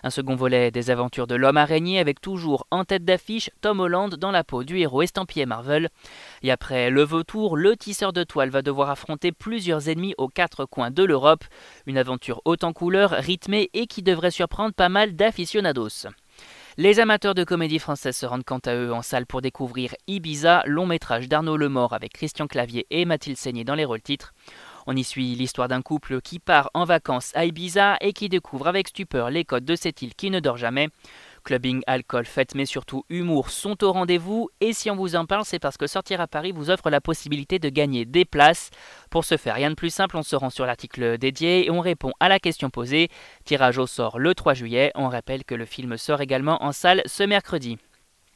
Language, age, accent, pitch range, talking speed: French, 20-39, French, 130-180 Hz, 215 wpm